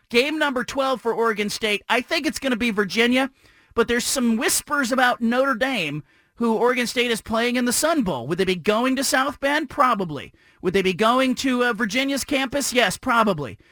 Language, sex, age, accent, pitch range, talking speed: English, male, 40-59, American, 215-255 Hz, 205 wpm